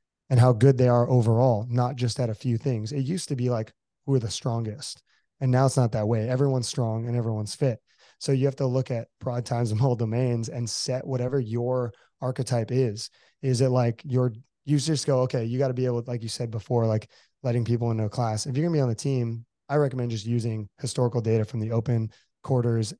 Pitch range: 115-130 Hz